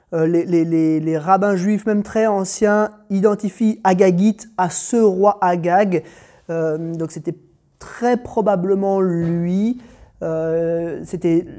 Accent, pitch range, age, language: French, 160-195 Hz, 30-49, French